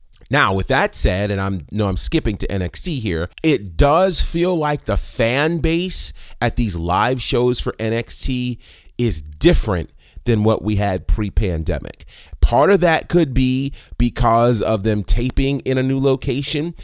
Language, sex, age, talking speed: English, male, 30-49, 160 wpm